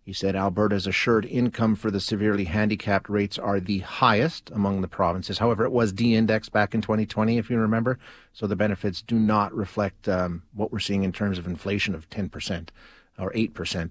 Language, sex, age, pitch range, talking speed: English, male, 40-59, 100-125 Hz, 195 wpm